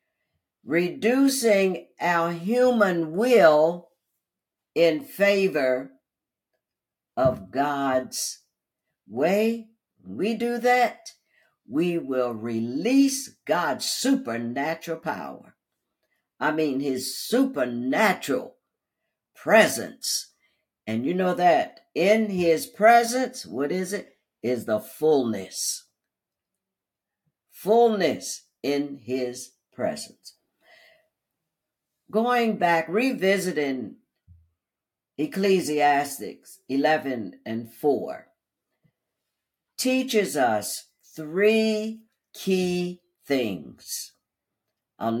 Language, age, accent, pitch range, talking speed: English, 60-79, American, 140-225 Hz, 70 wpm